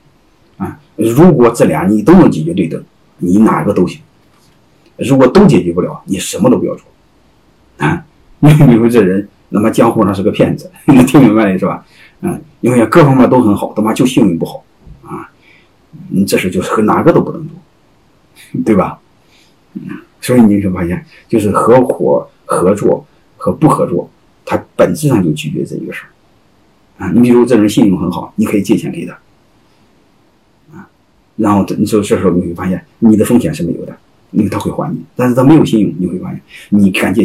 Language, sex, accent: Chinese, male, native